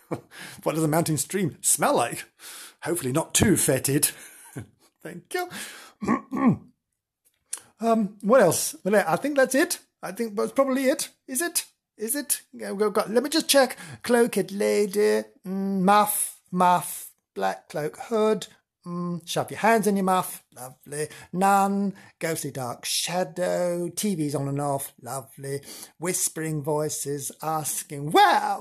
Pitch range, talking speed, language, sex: 140-225 Hz, 140 wpm, English, male